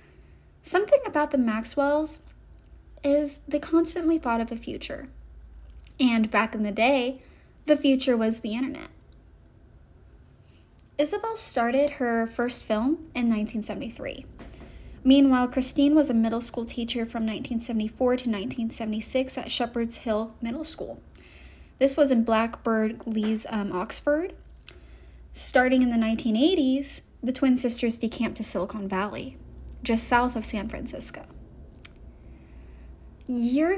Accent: American